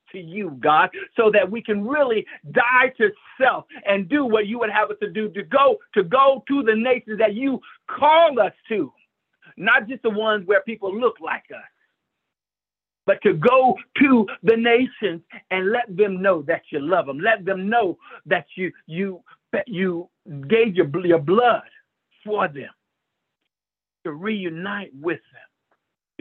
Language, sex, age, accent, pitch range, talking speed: English, male, 60-79, American, 165-245 Hz, 165 wpm